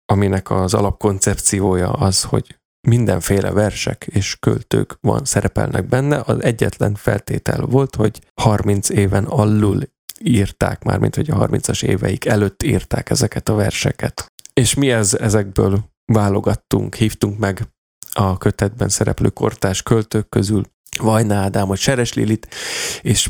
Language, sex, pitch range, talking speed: Hungarian, male, 100-125 Hz, 125 wpm